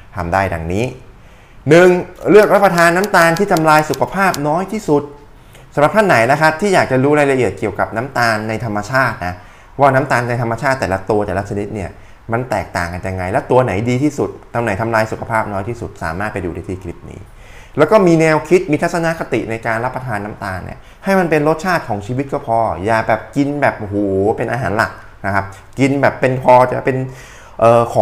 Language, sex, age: Thai, male, 20-39